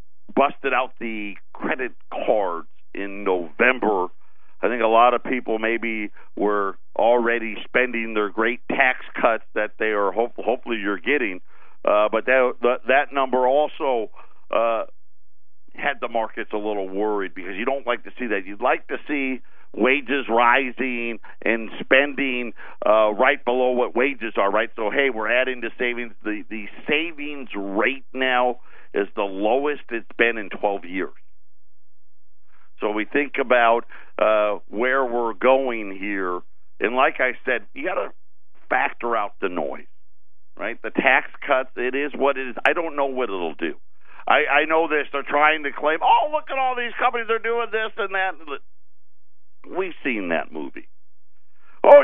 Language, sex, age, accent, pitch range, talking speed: English, male, 50-69, American, 105-145 Hz, 160 wpm